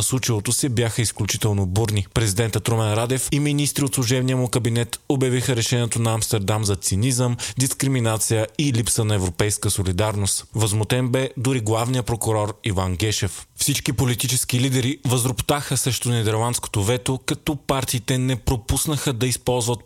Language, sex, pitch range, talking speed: Bulgarian, male, 105-130 Hz, 140 wpm